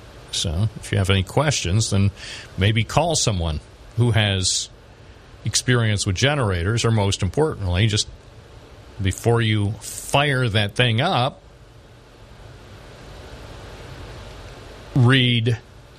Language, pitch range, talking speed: English, 105-125 Hz, 100 wpm